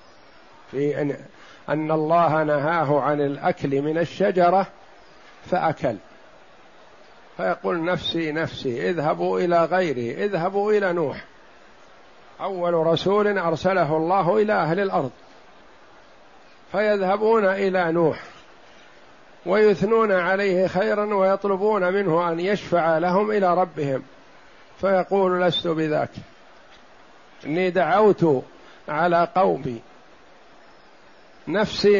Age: 50-69